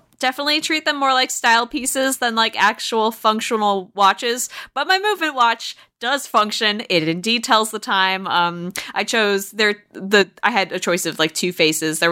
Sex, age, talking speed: female, 20-39, 185 wpm